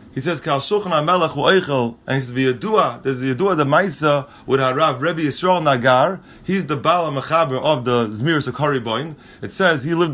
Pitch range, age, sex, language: 130-170 Hz, 30-49, male, English